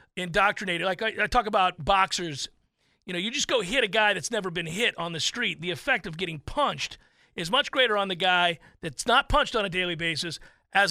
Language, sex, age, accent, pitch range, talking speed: English, male, 40-59, American, 180-245 Hz, 225 wpm